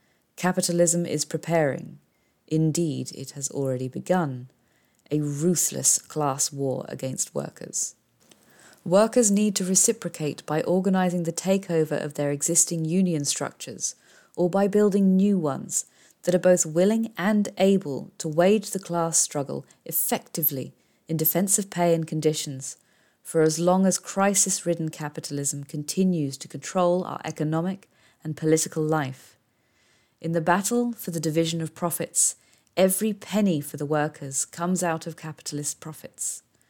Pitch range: 150-185 Hz